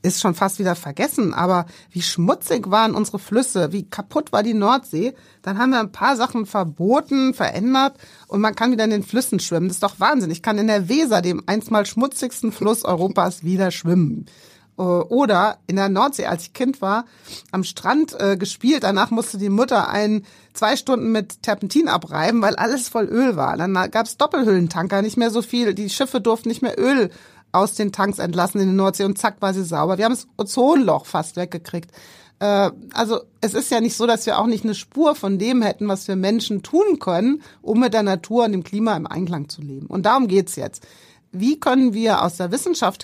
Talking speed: 210 wpm